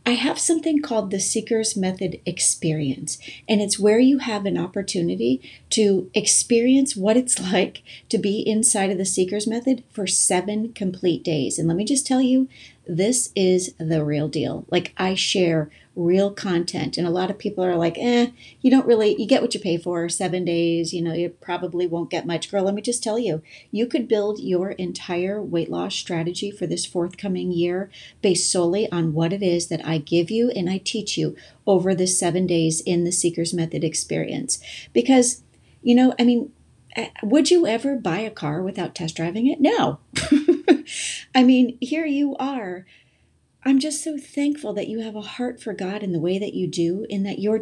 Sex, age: female, 40-59